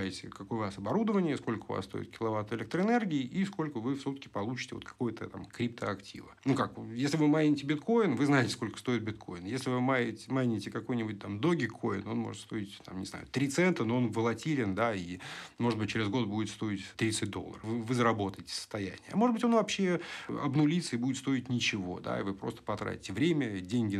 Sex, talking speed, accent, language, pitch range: male, 205 wpm, native, Russian, 100-145 Hz